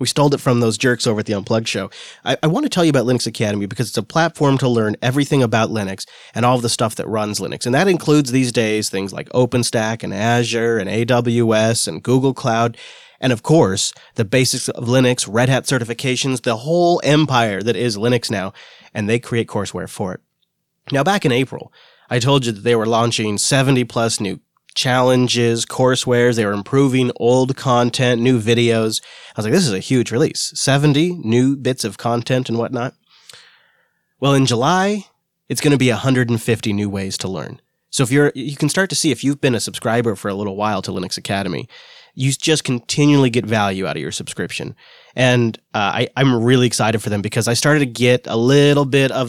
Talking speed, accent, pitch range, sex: 205 wpm, American, 115-135 Hz, male